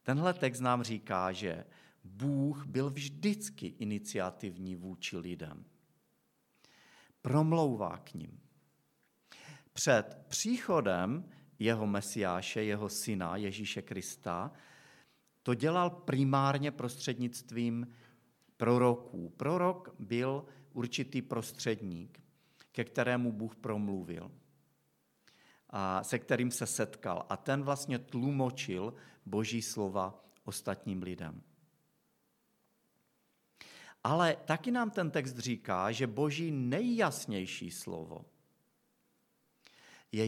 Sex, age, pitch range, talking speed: male, 50-69, 105-145 Hz, 90 wpm